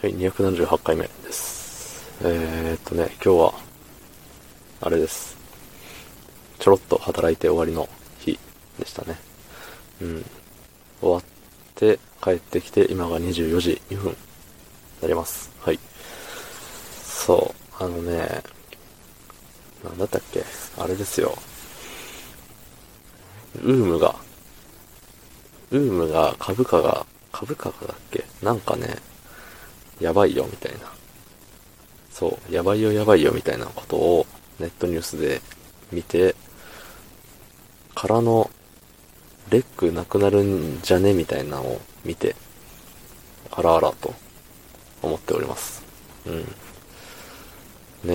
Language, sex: Japanese, male